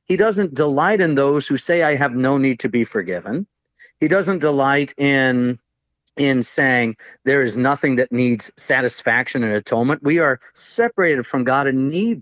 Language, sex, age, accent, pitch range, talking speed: English, male, 40-59, American, 125-155 Hz, 170 wpm